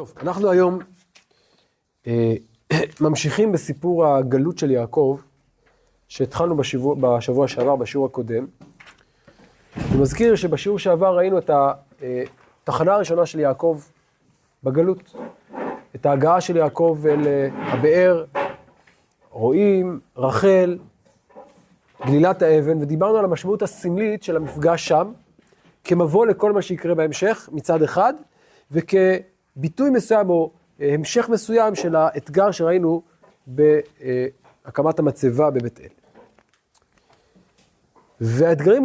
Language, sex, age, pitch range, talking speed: Hebrew, male, 30-49, 140-180 Hz, 95 wpm